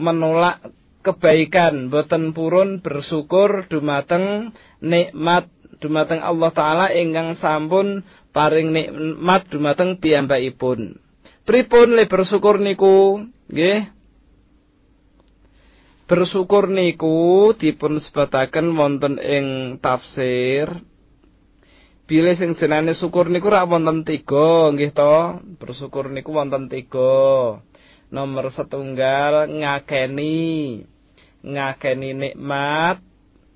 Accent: native